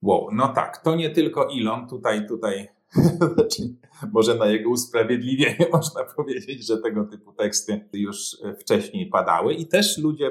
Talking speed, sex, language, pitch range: 150 wpm, male, Polish, 105-170 Hz